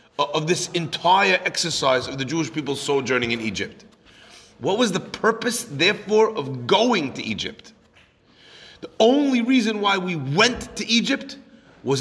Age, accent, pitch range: 30-49, American, 135-185 Hz